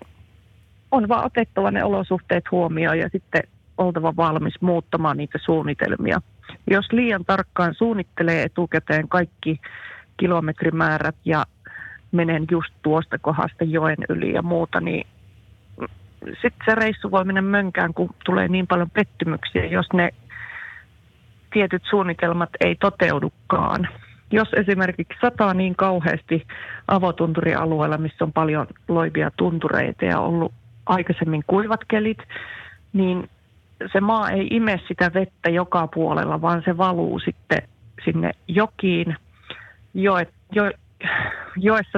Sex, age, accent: female, 30-49, native